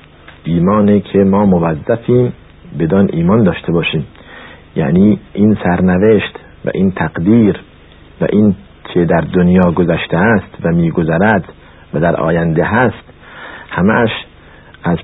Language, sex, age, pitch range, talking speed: Persian, male, 50-69, 85-130 Hz, 115 wpm